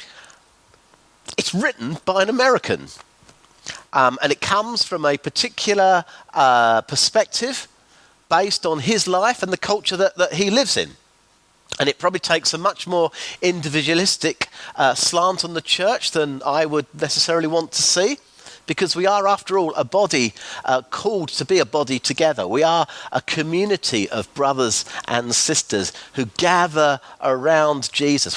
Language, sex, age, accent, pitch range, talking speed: English, male, 40-59, British, 150-210 Hz, 150 wpm